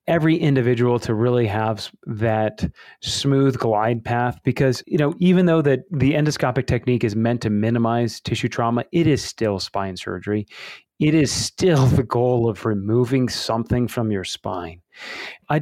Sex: male